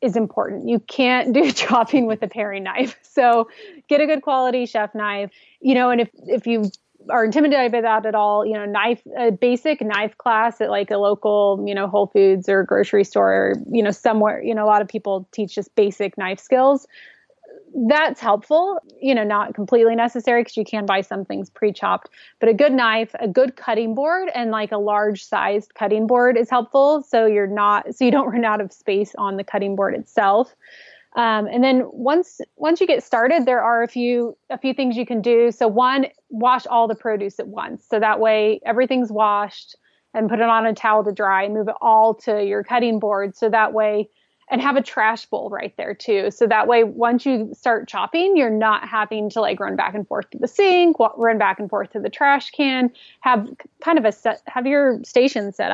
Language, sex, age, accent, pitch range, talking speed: English, female, 20-39, American, 210-255 Hz, 215 wpm